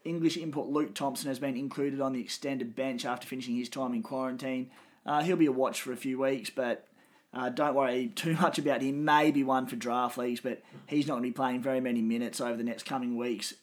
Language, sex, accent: English, male, Australian